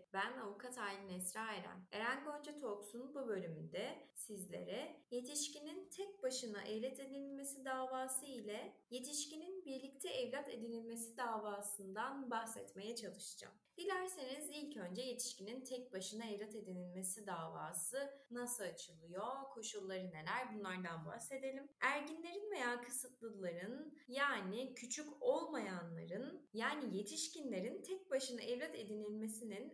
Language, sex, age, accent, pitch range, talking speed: Turkish, female, 20-39, native, 215-280 Hz, 105 wpm